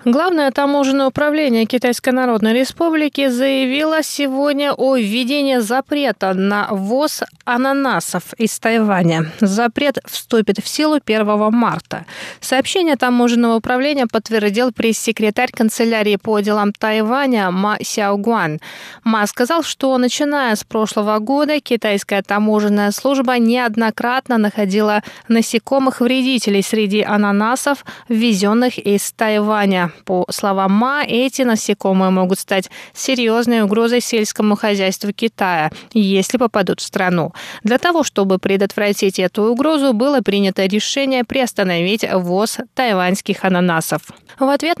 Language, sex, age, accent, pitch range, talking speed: Russian, female, 20-39, native, 210-260 Hz, 110 wpm